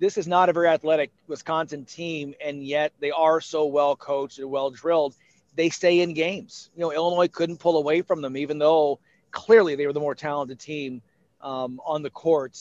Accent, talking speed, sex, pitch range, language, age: American, 200 wpm, male, 145-170 Hz, English, 40-59